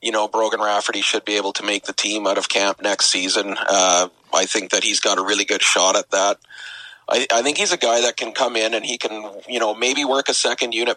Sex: male